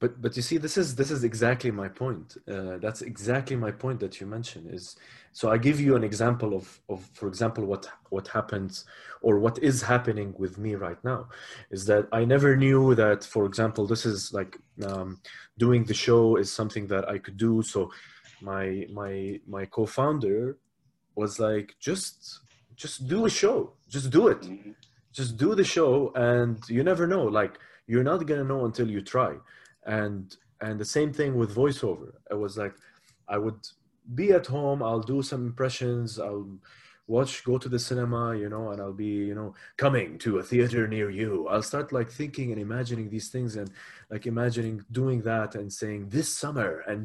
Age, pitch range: 30-49, 105-130 Hz